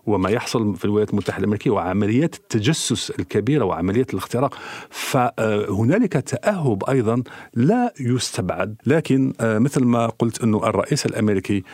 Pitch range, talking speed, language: 95-120 Hz, 120 wpm, Arabic